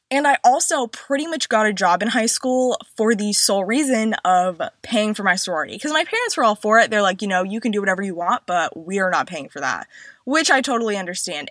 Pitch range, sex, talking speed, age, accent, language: 190-260 Hz, female, 250 wpm, 20-39, American, English